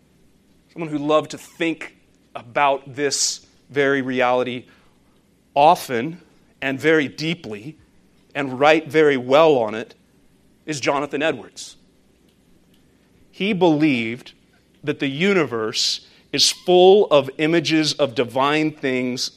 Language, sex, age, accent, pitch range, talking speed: English, male, 40-59, American, 145-175 Hz, 105 wpm